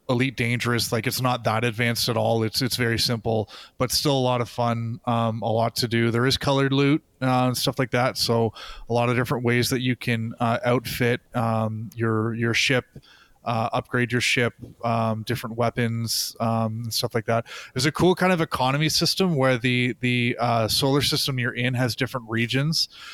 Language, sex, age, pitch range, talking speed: English, male, 20-39, 115-130 Hz, 200 wpm